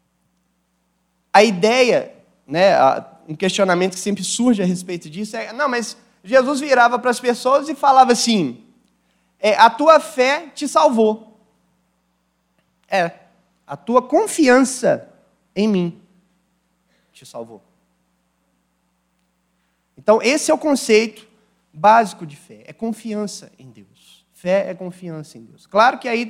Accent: Brazilian